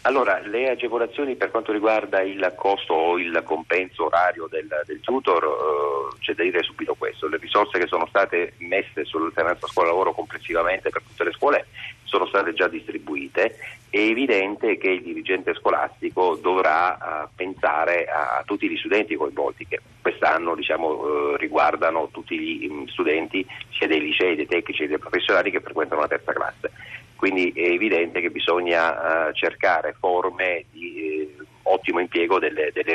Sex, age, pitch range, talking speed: male, 40-59, 320-445 Hz, 155 wpm